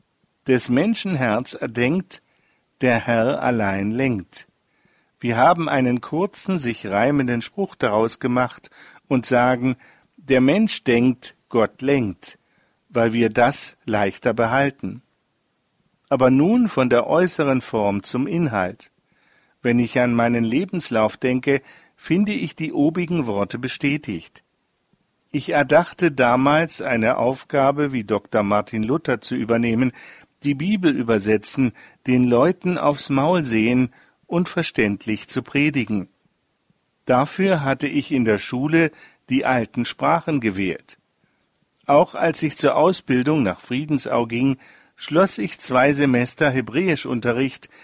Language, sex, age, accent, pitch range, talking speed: German, male, 50-69, German, 120-150 Hz, 120 wpm